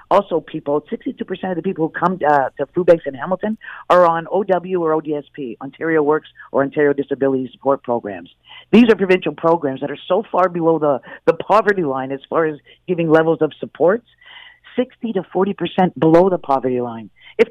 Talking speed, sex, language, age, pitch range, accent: 190 wpm, female, English, 50-69, 150-190 Hz, American